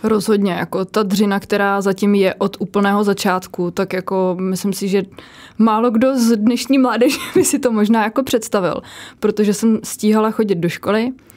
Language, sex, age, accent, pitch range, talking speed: Czech, female, 20-39, native, 195-220 Hz, 170 wpm